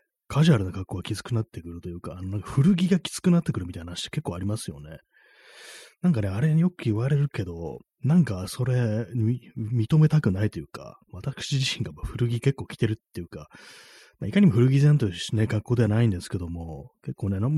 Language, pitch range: Japanese, 95-145 Hz